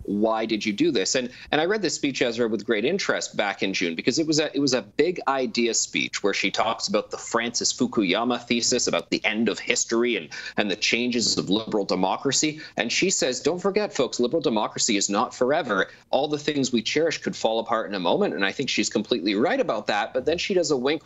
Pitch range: 115-160 Hz